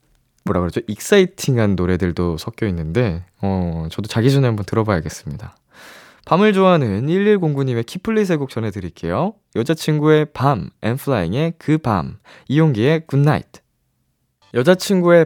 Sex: male